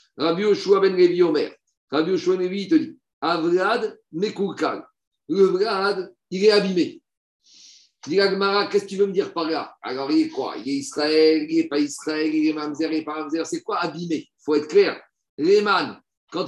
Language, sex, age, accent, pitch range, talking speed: French, male, 50-69, French, 155-240 Hz, 220 wpm